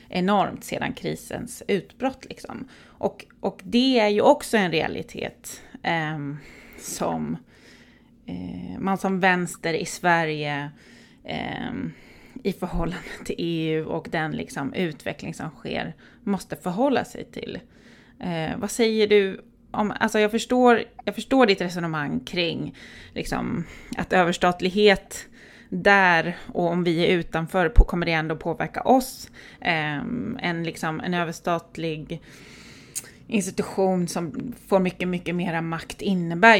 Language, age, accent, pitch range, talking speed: Swedish, 20-39, native, 165-210 Hz, 125 wpm